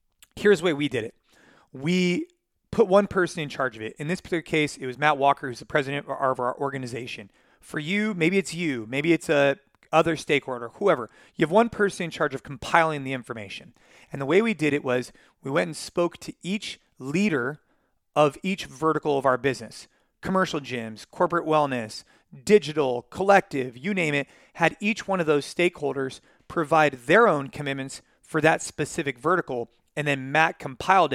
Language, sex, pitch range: English, male, 135-180 Hz